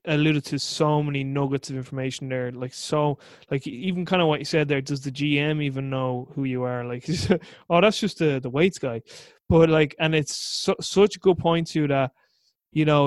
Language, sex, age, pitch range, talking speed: English, male, 20-39, 130-155 Hz, 215 wpm